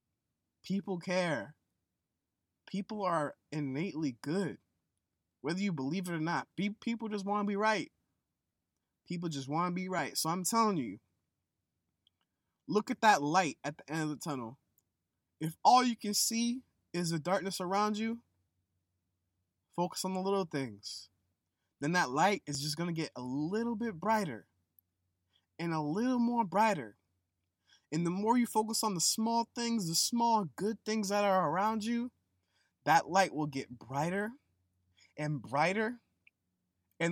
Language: English